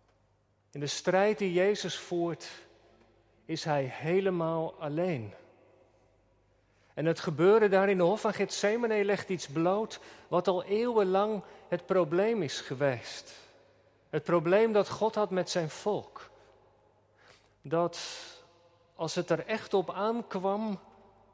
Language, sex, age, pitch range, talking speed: Dutch, male, 40-59, 115-185 Hz, 125 wpm